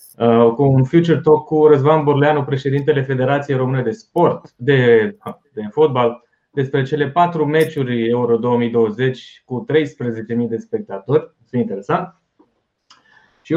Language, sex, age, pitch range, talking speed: Romanian, male, 20-39, 120-155 Hz, 125 wpm